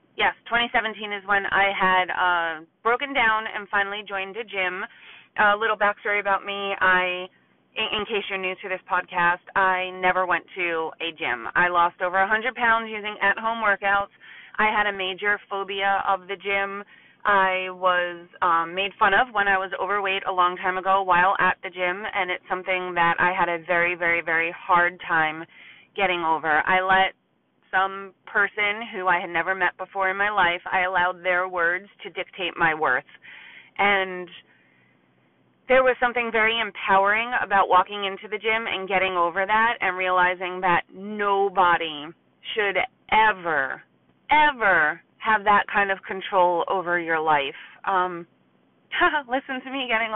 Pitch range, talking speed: 180-210 Hz, 165 wpm